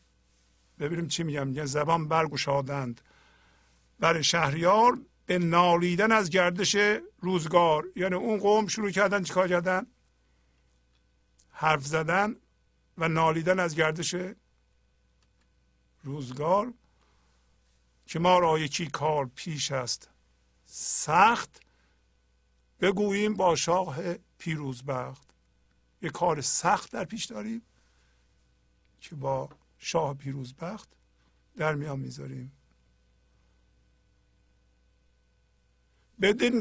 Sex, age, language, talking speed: male, 50-69, Persian, 85 wpm